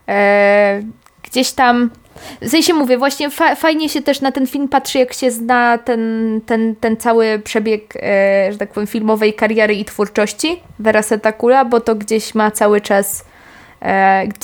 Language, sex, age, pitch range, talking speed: Polish, female, 20-39, 205-245 Hz, 165 wpm